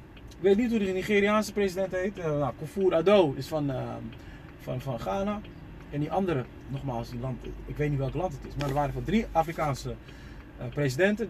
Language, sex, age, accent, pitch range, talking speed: Dutch, male, 40-59, Dutch, 145-235 Hz, 205 wpm